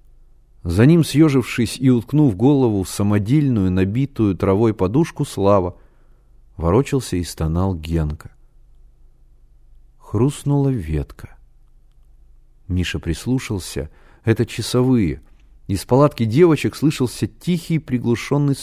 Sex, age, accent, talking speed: male, 40-59, native, 90 wpm